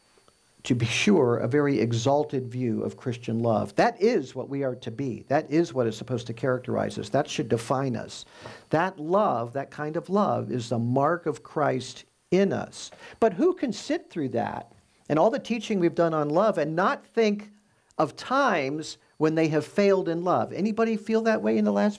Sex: male